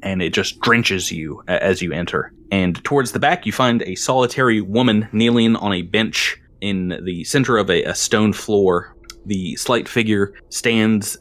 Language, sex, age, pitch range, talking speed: English, male, 30-49, 95-120 Hz, 175 wpm